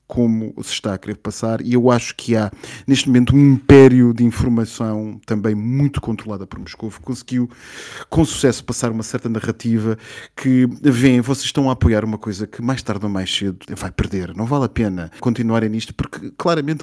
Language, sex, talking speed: Portuguese, male, 195 wpm